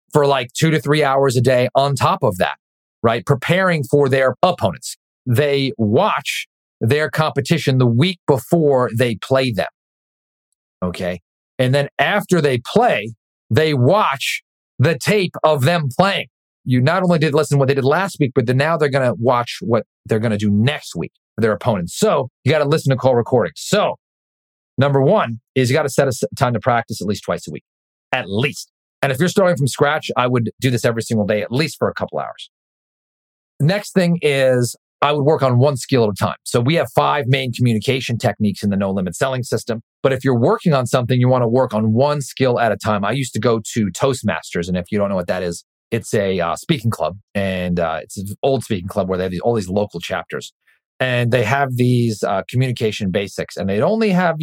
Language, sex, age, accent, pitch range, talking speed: English, male, 40-59, American, 110-145 Hz, 215 wpm